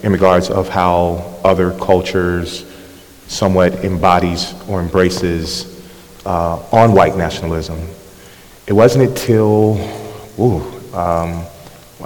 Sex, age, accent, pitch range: male, 30-49, American, 90-105 Hz